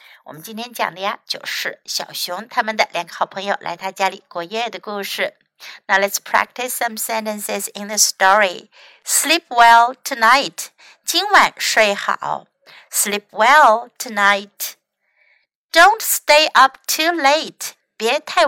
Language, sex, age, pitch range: Chinese, female, 60-79, 205-310 Hz